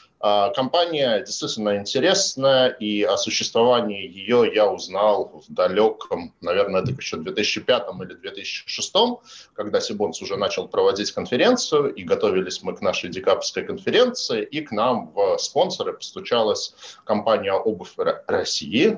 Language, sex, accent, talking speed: Russian, male, native, 125 wpm